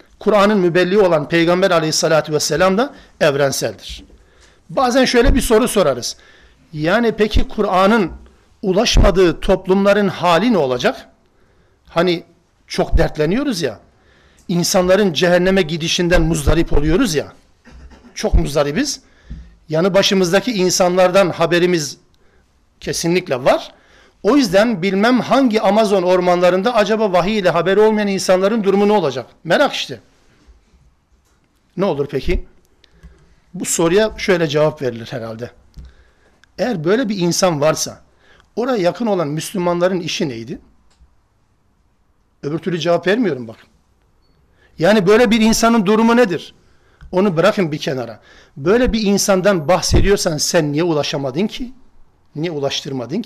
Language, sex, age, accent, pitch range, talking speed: Turkish, male, 50-69, native, 150-205 Hz, 115 wpm